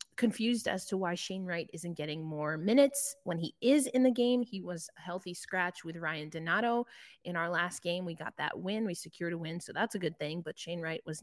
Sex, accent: female, American